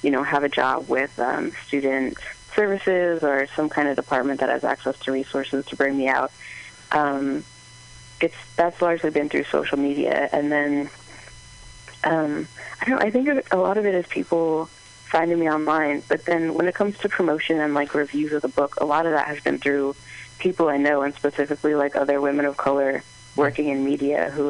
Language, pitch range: English, 135-155 Hz